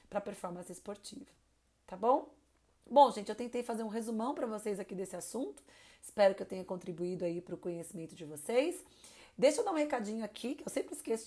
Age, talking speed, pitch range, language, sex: 30-49, 210 wpm, 195-250 Hz, Portuguese, female